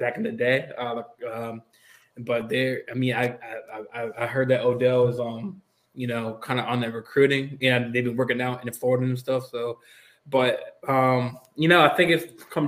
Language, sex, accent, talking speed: English, male, American, 210 wpm